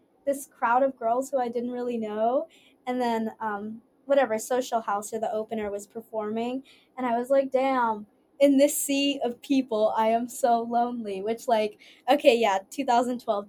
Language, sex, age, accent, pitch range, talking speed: English, female, 20-39, American, 210-250 Hz, 175 wpm